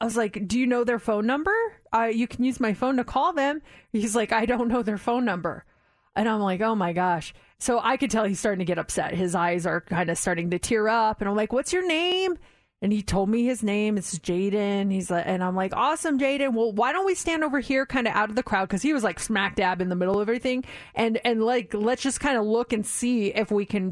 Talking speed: 270 wpm